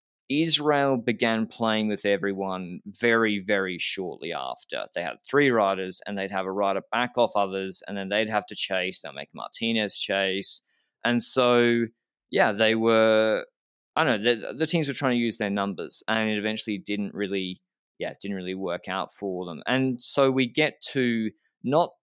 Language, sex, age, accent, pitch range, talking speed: English, male, 20-39, Australian, 100-125 Hz, 185 wpm